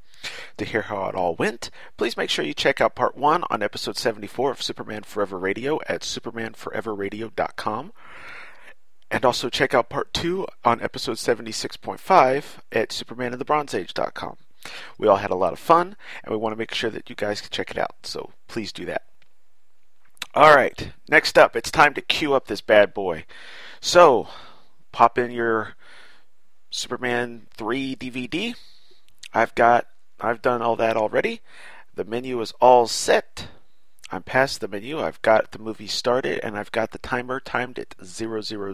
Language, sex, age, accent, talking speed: English, male, 40-59, American, 165 wpm